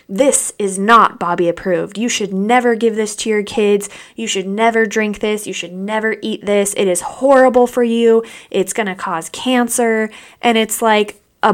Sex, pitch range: female, 195-240 Hz